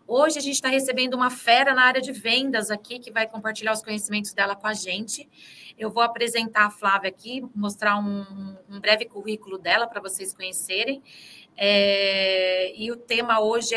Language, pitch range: Portuguese, 200-240 Hz